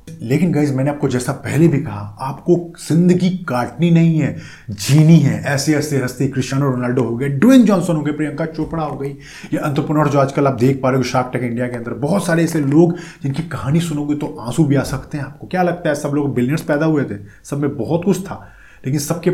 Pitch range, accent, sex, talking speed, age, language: 130-165 Hz, native, male, 225 wpm, 30-49, Hindi